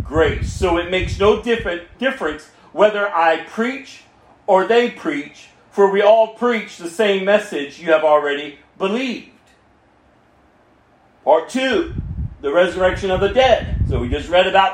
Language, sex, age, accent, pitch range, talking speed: English, male, 40-59, American, 200-265 Hz, 145 wpm